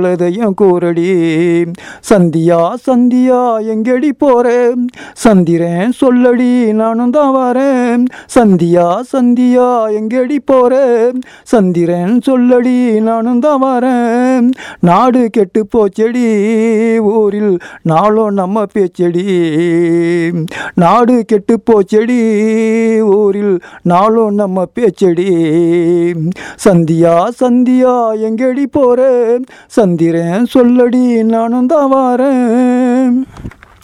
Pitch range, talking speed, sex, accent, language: 190-250 Hz, 70 wpm, male, native, Tamil